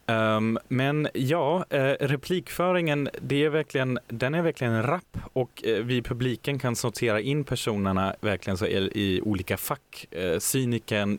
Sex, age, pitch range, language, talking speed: male, 30-49, 100-120 Hz, Swedish, 130 wpm